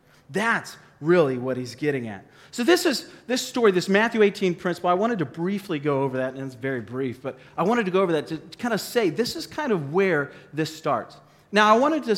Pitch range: 145-190 Hz